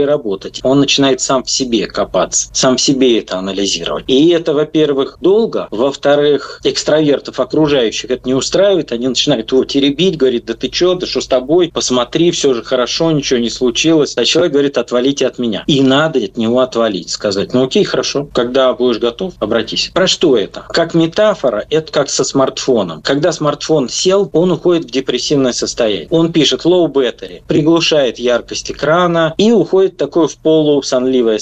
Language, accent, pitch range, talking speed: Russian, native, 120-160 Hz, 170 wpm